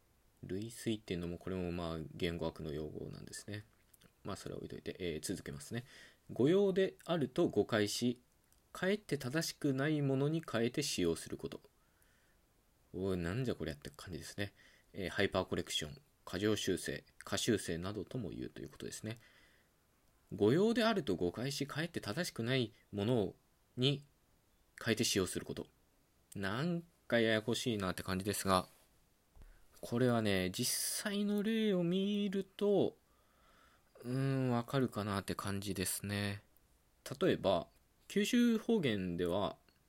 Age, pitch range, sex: 20-39, 95-140 Hz, male